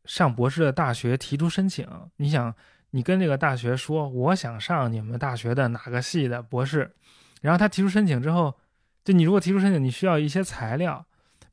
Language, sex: Chinese, male